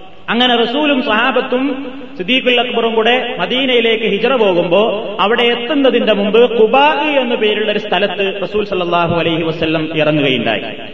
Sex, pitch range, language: male, 180-225 Hz, Malayalam